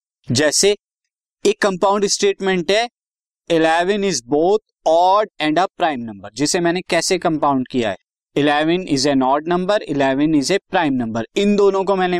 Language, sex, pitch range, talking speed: Hindi, male, 145-195 Hz, 160 wpm